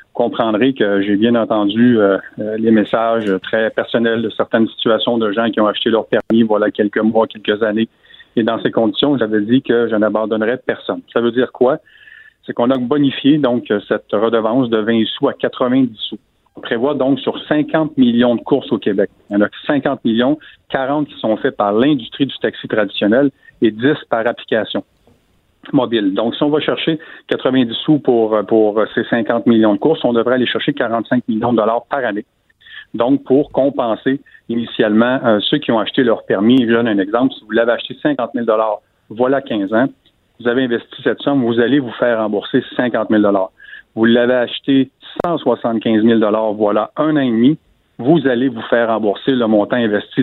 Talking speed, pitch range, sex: 195 wpm, 110-135 Hz, male